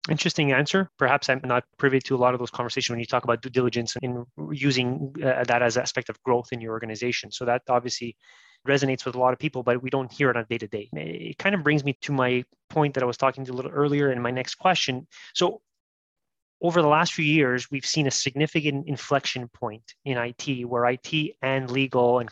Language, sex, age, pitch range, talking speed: English, male, 20-39, 120-140 Hz, 230 wpm